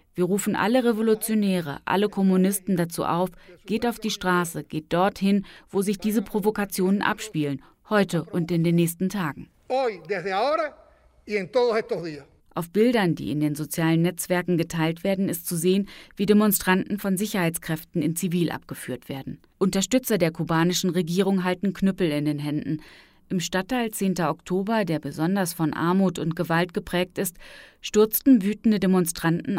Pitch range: 165-210 Hz